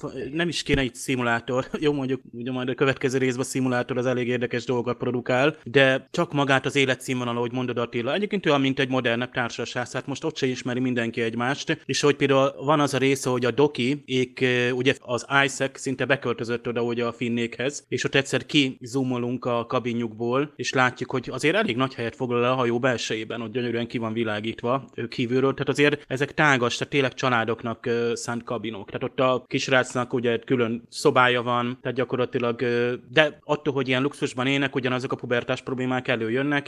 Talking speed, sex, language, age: 190 wpm, male, Hungarian, 30-49